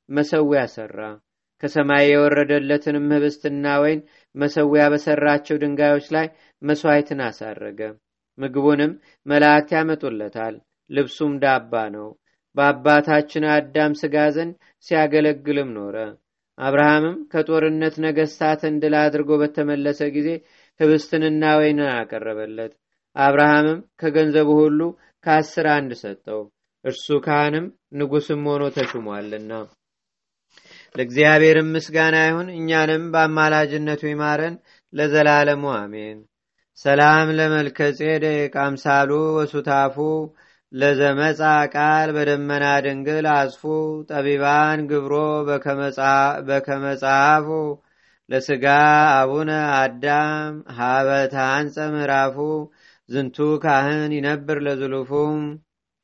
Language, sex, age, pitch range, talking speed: Amharic, male, 30-49, 140-155 Hz, 75 wpm